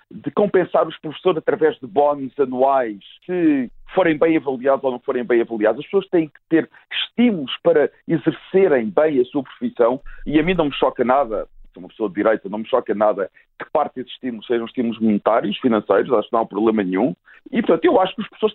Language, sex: Portuguese, male